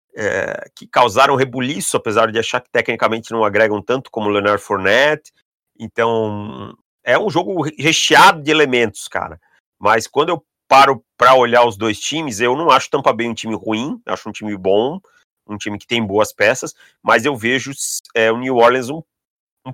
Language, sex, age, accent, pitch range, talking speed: Portuguese, male, 30-49, Brazilian, 110-145 Hz, 180 wpm